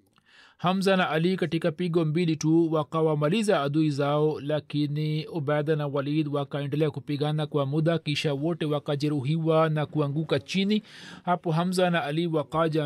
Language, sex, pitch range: Swahili, male, 140-160 Hz